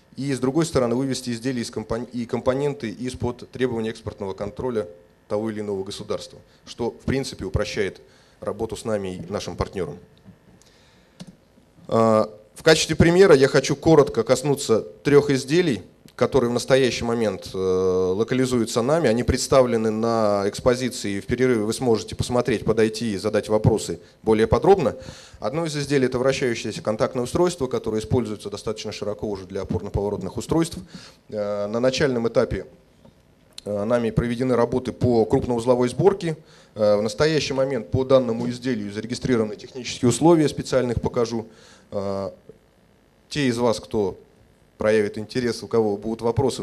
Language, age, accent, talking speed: Russian, 30-49, native, 130 wpm